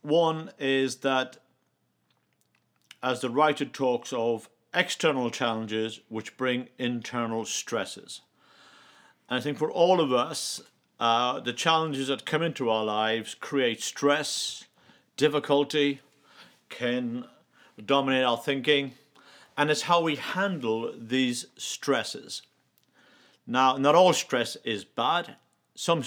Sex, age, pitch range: male, 50-69, 120-160 Hz